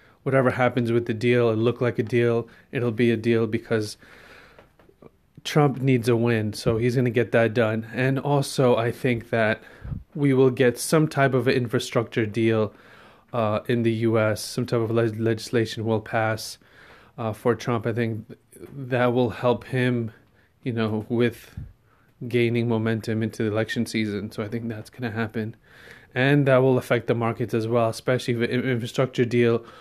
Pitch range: 115-125 Hz